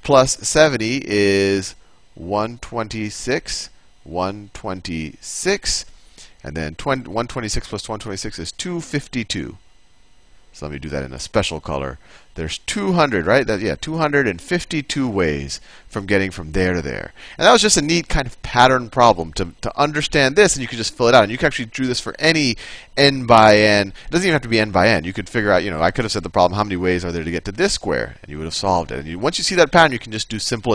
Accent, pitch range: American, 90-125 Hz